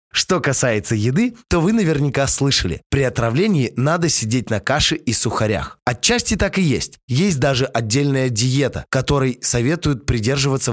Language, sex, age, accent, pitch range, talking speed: Russian, male, 20-39, native, 110-155 Hz, 145 wpm